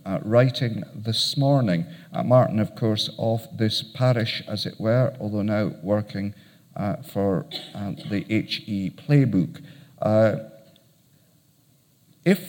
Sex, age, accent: male, 50-69, British